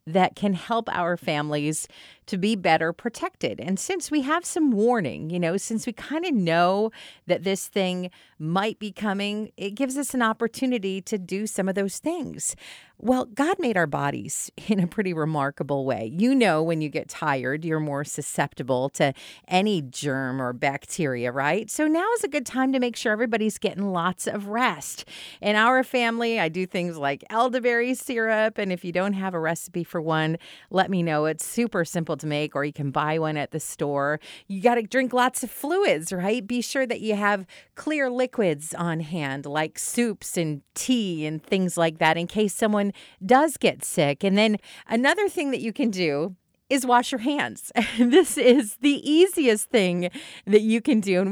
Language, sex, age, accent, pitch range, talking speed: English, female, 40-59, American, 160-240 Hz, 195 wpm